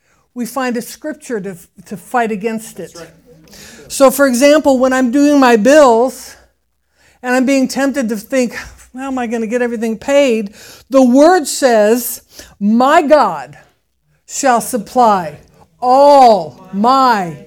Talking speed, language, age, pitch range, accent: 135 wpm, English, 60-79, 225-285 Hz, American